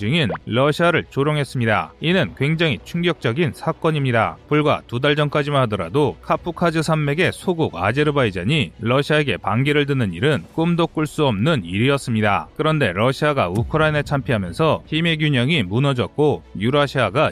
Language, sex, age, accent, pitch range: Korean, male, 30-49, native, 120-155 Hz